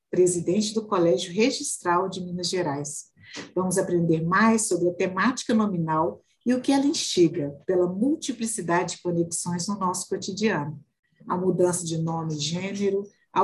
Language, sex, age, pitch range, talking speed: Portuguese, female, 50-69, 165-215 Hz, 145 wpm